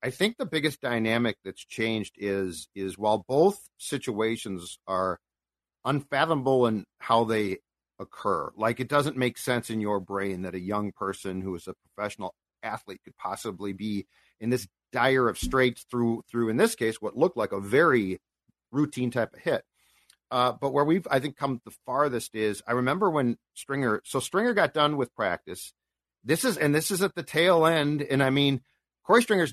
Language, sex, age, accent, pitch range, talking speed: English, male, 50-69, American, 105-145 Hz, 185 wpm